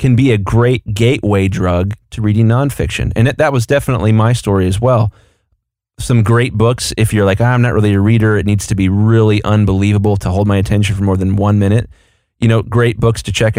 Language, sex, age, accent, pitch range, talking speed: English, male, 30-49, American, 100-120 Hz, 225 wpm